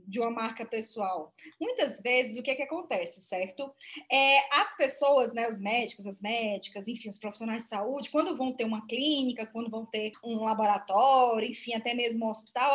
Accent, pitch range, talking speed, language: Brazilian, 225-300 Hz, 190 wpm, Portuguese